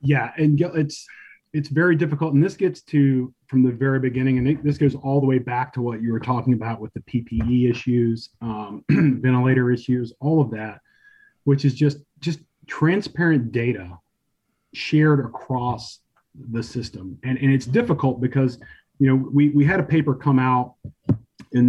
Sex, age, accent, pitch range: male, 30-49, American, 125-145 Hz